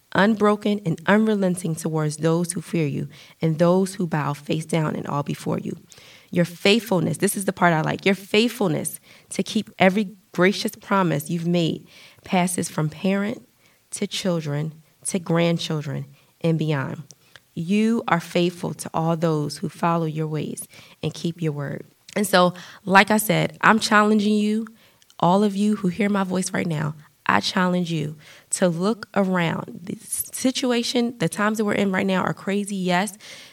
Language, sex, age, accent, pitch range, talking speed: English, female, 20-39, American, 165-205 Hz, 165 wpm